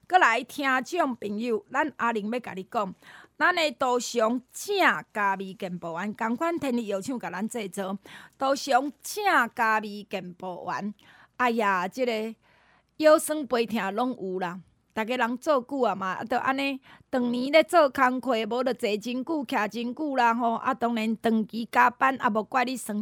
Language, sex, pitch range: Chinese, female, 215-295 Hz